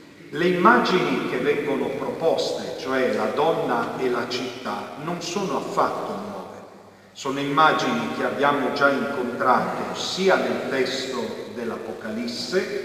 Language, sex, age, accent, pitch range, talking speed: Italian, male, 50-69, native, 120-175 Hz, 115 wpm